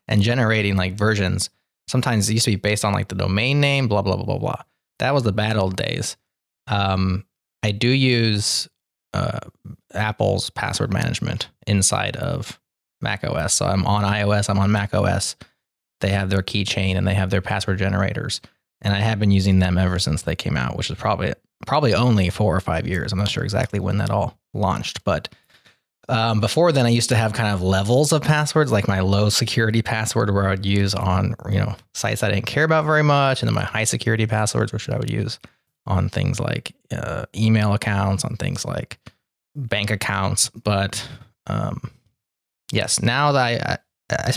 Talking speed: 195 wpm